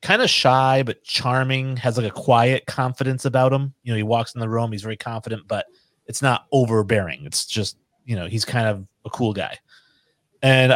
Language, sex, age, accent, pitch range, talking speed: English, male, 30-49, American, 105-130 Hz, 205 wpm